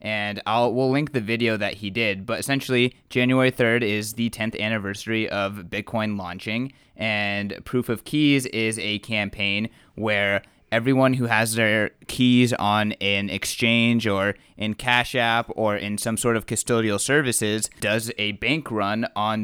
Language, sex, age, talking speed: English, male, 20-39, 160 wpm